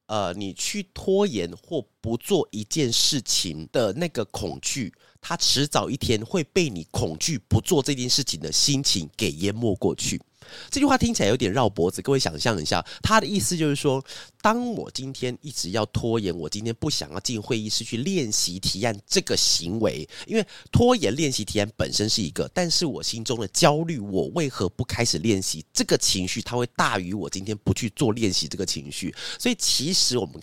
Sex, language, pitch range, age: male, Chinese, 105-160 Hz, 30-49